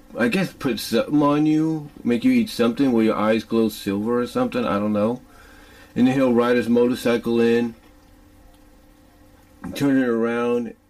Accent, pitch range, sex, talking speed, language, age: American, 110-135 Hz, male, 165 wpm, English, 40-59